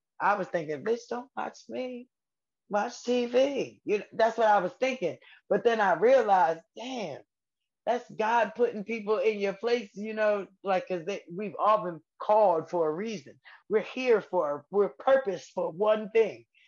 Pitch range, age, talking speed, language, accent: 160-215 Hz, 20-39, 175 wpm, English, American